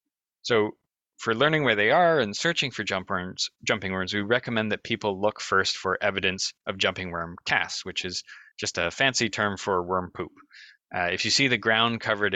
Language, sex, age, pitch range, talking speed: English, male, 20-39, 95-120 Hz, 190 wpm